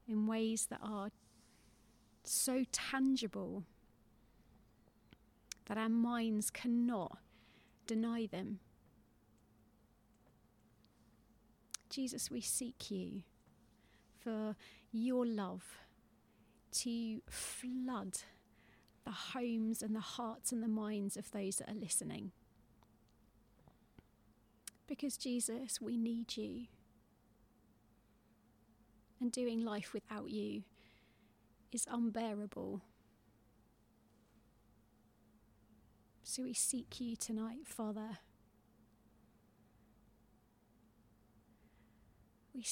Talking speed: 75 wpm